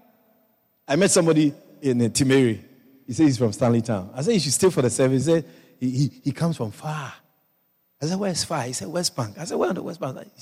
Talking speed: 255 wpm